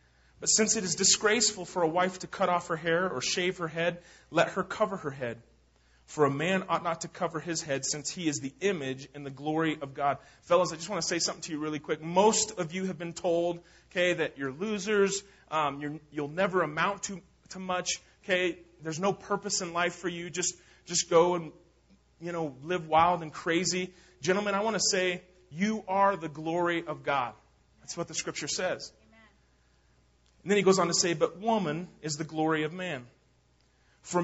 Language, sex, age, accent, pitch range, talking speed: English, male, 30-49, American, 150-185 Hz, 205 wpm